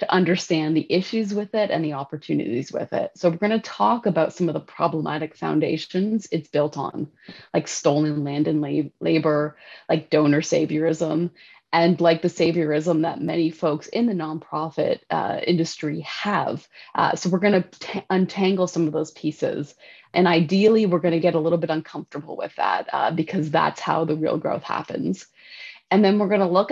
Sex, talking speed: female, 175 wpm